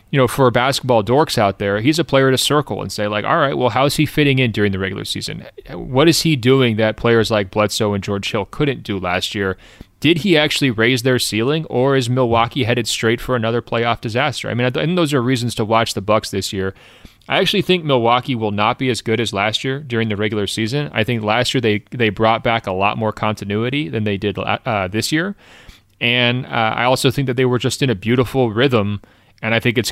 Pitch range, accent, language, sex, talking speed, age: 105-130 Hz, American, English, male, 240 wpm, 30-49